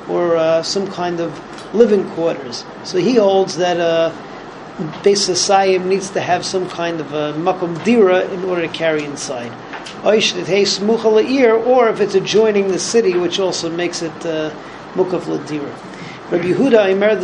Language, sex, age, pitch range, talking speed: English, male, 40-59, 170-205 Hz, 155 wpm